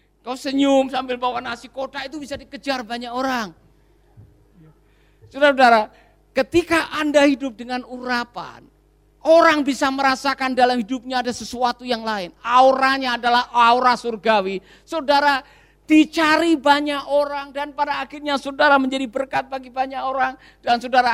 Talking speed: 130 wpm